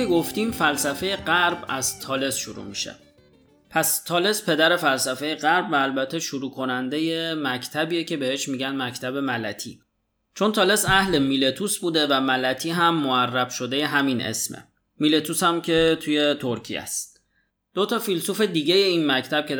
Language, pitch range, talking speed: Persian, 125-160 Hz, 145 wpm